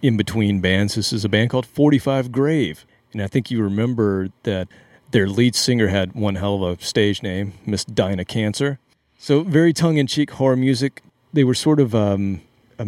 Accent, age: American, 40-59